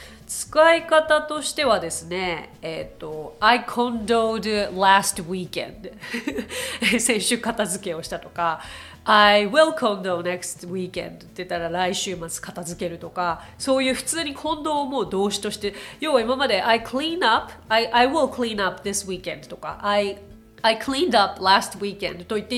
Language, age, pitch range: Japanese, 30-49, 185-270 Hz